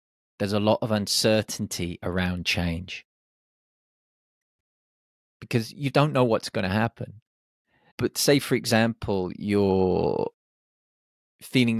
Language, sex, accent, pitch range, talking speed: English, male, British, 95-125 Hz, 105 wpm